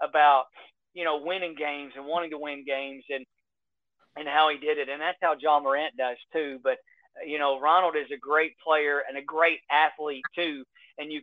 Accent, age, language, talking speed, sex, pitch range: American, 40-59, English, 205 wpm, male, 135-155 Hz